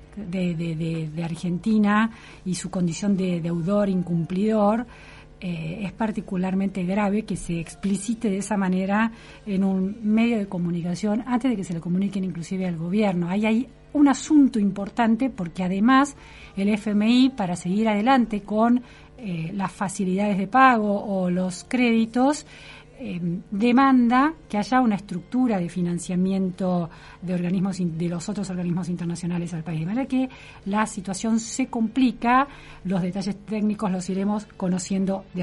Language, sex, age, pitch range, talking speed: Spanish, female, 40-59, 185-245 Hz, 140 wpm